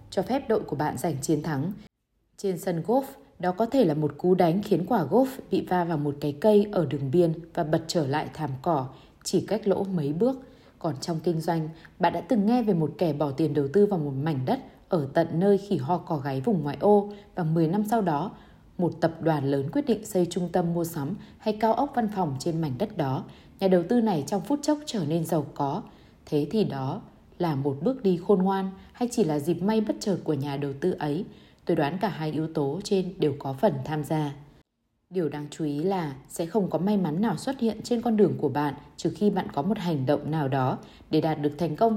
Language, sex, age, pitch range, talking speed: Vietnamese, female, 20-39, 150-205 Hz, 245 wpm